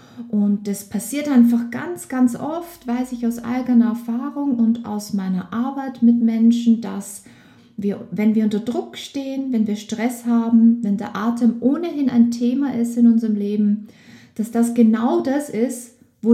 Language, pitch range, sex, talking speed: German, 220-245 Hz, female, 165 wpm